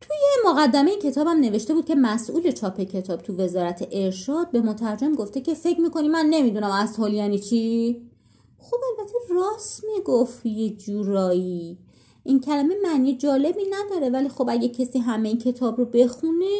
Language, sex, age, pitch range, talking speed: Persian, female, 30-49, 205-335 Hz, 155 wpm